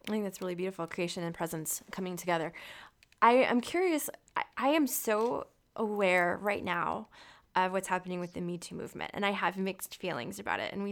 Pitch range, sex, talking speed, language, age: 180-225 Hz, female, 205 wpm, English, 20-39